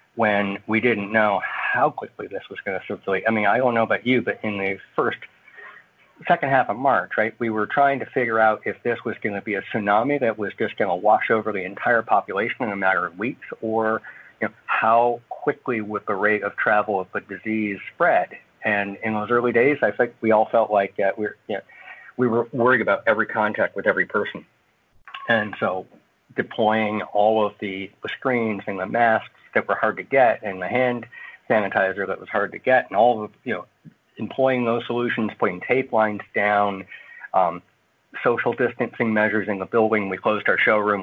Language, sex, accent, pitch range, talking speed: English, male, American, 100-115 Hz, 200 wpm